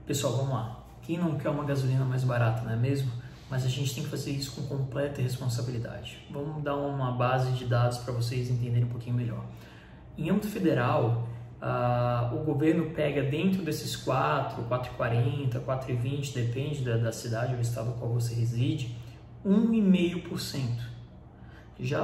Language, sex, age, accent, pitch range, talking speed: Portuguese, male, 20-39, Brazilian, 120-155 Hz, 160 wpm